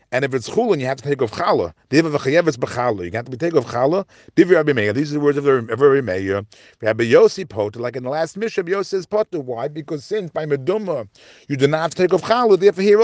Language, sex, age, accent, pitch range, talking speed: English, male, 40-59, American, 125-195 Hz, 215 wpm